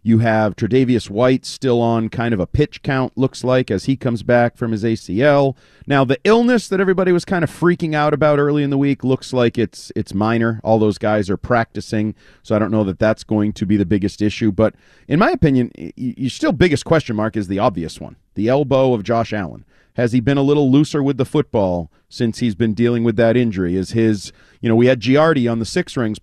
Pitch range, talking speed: 110-140 Hz, 235 wpm